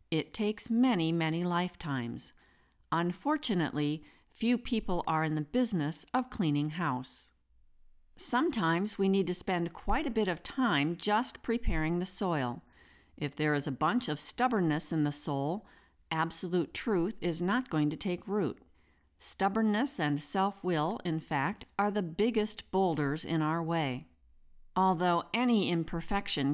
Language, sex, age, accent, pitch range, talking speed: English, female, 50-69, American, 150-200 Hz, 140 wpm